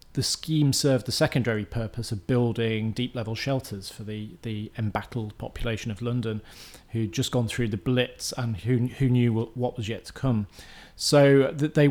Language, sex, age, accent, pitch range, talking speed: English, male, 30-49, British, 110-130 Hz, 170 wpm